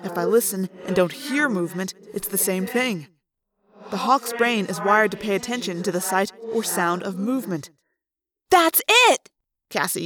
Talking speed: 175 wpm